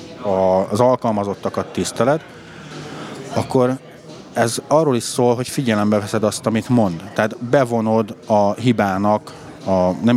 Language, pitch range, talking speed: Hungarian, 100-130 Hz, 120 wpm